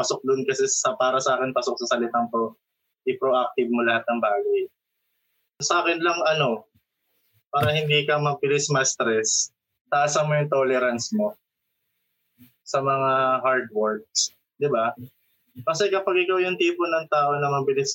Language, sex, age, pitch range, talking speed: Filipino, male, 20-39, 130-180 Hz, 150 wpm